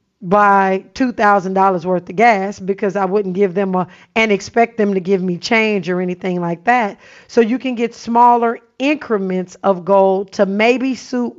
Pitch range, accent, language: 195-235 Hz, American, English